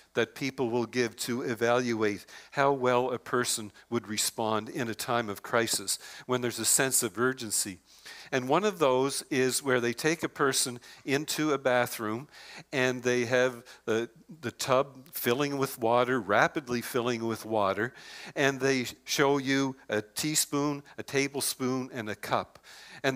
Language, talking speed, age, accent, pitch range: English, 160 wpm, 50-69, American, 120-140 Hz